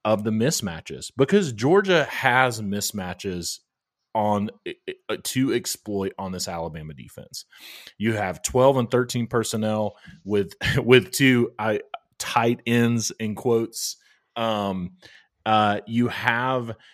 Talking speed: 110 wpm